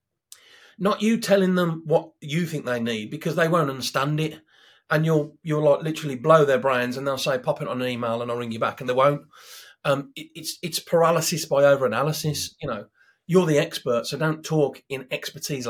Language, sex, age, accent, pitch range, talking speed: English, male, 40-59, British, 145-190 Hz, 215 wpm